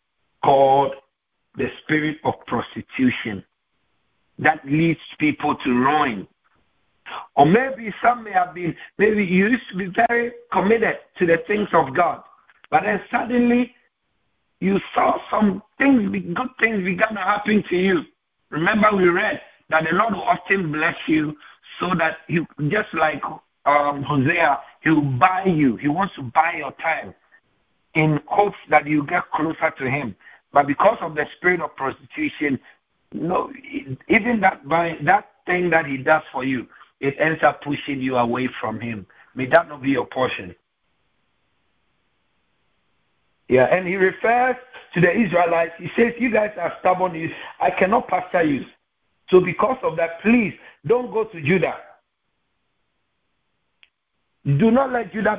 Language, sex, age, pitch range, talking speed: English, male, 60-79, 150-210 Hz, 150 wpm